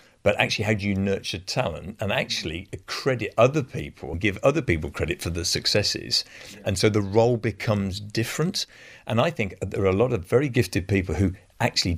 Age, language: 50-69, English